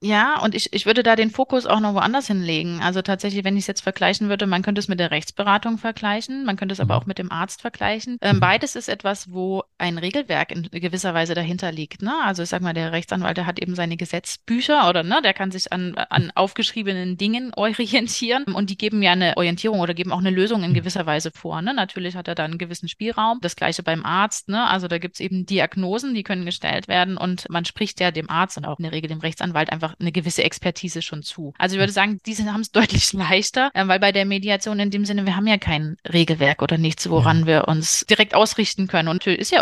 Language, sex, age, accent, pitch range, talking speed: German, female, 30-49, German, 170-205 Hz, 240 wpm